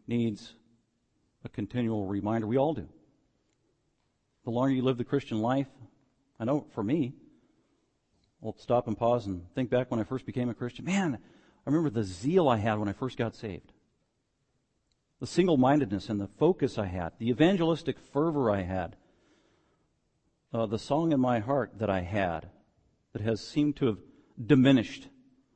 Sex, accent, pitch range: male, American, 105-130 Hz